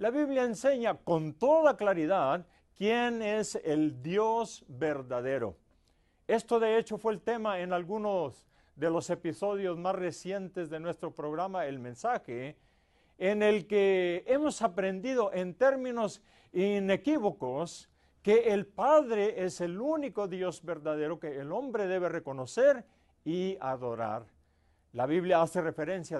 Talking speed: 130 wpm